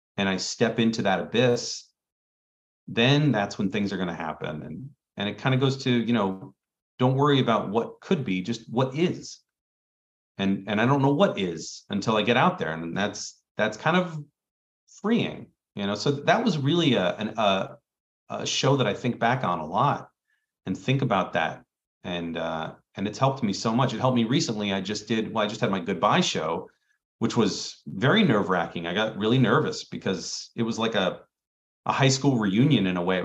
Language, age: English, 40-59